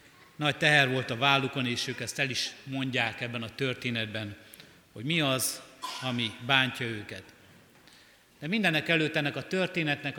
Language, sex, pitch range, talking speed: Hungarian, male, 125-150 Hz, 155 wpm